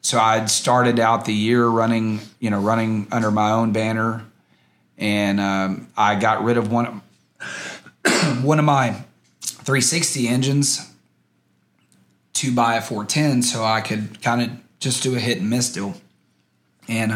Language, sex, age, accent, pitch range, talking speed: English, male, 30-49, American, 105-120 Hz, 150 wpm